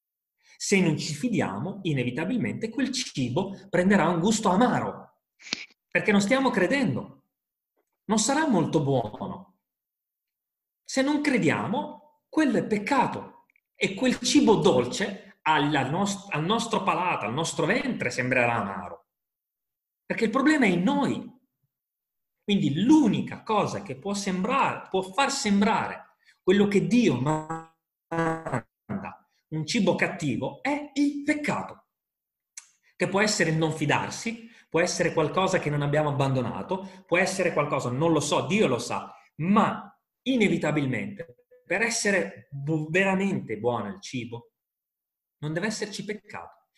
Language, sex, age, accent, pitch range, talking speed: Italian, male, 30-49, native, 155-225 Hz, 120 wpm